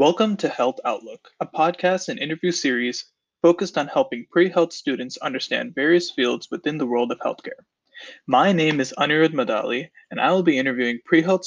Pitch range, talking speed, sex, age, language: 125-175 Hz, 175 wpm, male, 20-39, English